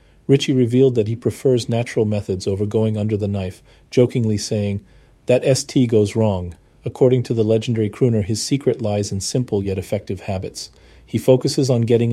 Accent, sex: American, male